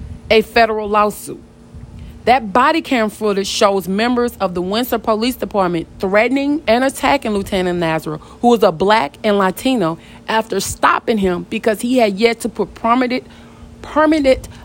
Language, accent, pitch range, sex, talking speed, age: English, American, 185-230 Hz, female, 145 wpm, 40-59